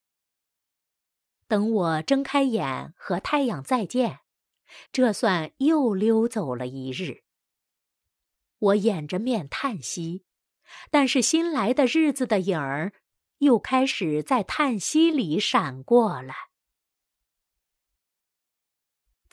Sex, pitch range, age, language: female, 175-275 Hz, 30-49, Chinese